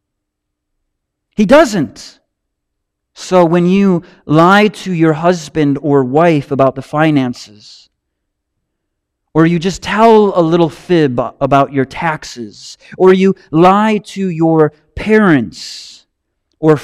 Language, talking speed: English, 110 wpm